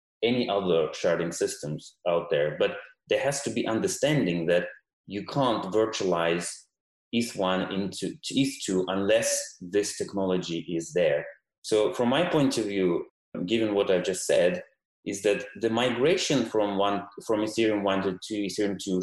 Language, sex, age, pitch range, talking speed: English, male, 30-49, 95-125 Hz, 150 wpm